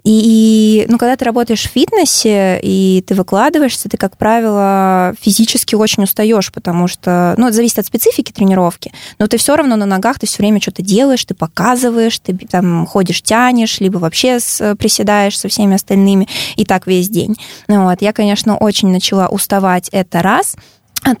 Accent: native